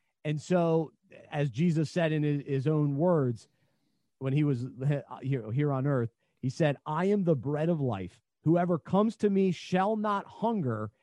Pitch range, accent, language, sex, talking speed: 140-185 Hz, American, English, male, 165 wpm